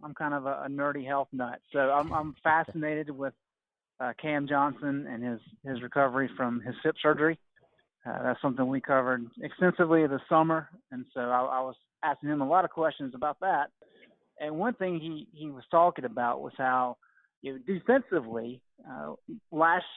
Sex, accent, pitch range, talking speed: male, American, 140-170 Hz, 170 wpm